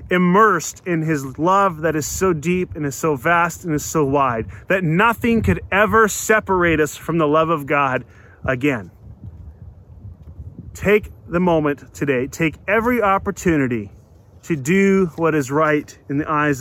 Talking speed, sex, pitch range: 155 wpm, male, 115-190 Hz